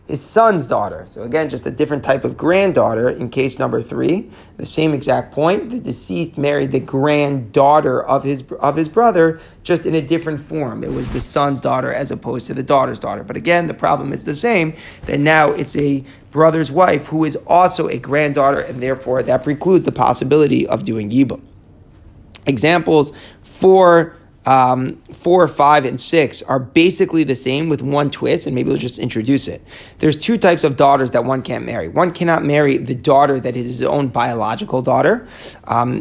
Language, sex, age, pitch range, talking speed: English, male, 30-49, 130-160 Hz, 190 wpm